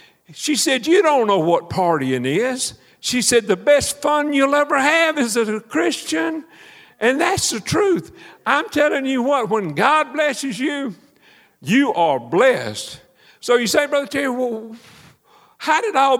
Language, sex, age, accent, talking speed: English, male, 50-69, American, 165 wpm